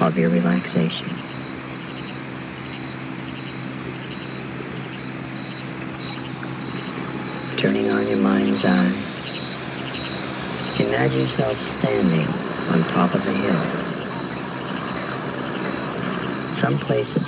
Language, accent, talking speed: English, American, 65 wpm